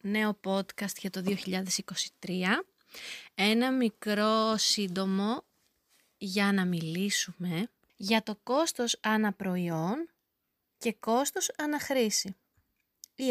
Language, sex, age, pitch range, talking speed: Greek, female, 20-39, 195-270 Hz, 85 wpm